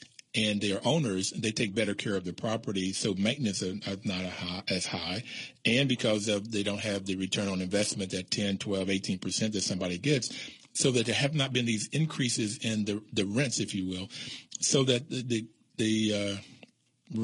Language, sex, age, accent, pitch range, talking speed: English, male, 40-59, American, 100-125 Hz, 195 wpm